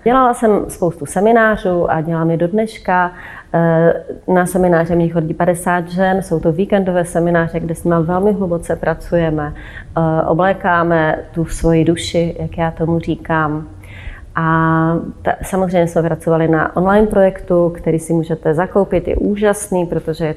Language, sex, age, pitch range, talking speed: Czech, female, 30-49, 160-190 Hz, 140 wpm